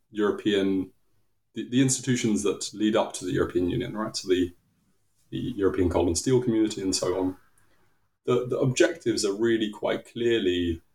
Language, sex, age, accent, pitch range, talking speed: English, male, 20-39, British, 95-115 Hz, 170 wpm